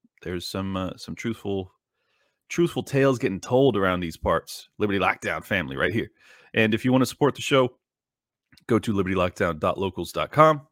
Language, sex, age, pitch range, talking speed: English, male, 30-49, 95-130 Hz, 155 wpm